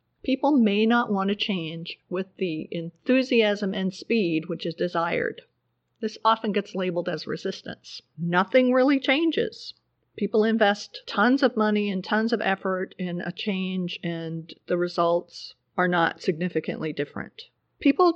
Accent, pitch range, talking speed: American, 180-225 Hz, 140 wpm